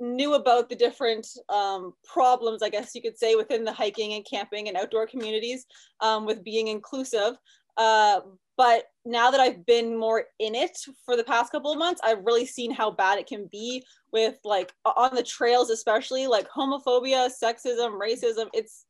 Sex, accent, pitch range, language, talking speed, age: female, American, 220-265 Hz, English, 180 wpm, 20-39